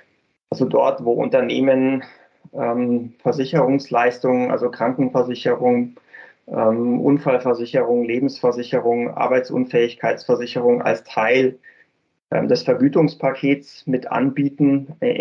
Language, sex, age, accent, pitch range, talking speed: German, male, 20-39, German, 125-155 Hz, 80 wpm